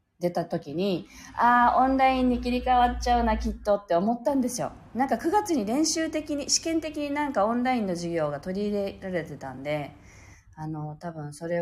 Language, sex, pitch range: Japanese, female, 165-240 Hz